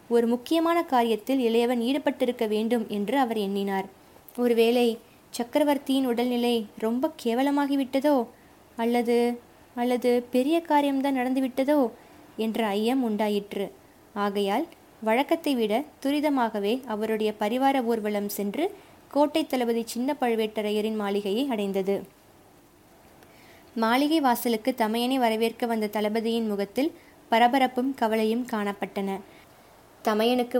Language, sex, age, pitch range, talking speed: Tamil, female, 20-39, 215-265 Hz, 90 wpm